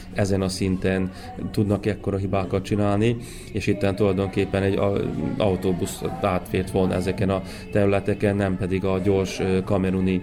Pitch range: 95-105 Hz